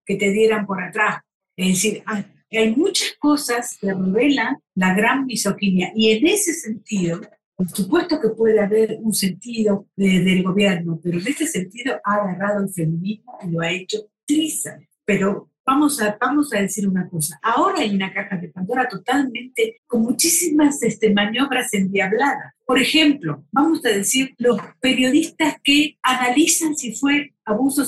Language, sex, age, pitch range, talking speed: Spanish, female, 50-69, 200-280 Hz, 160 wpm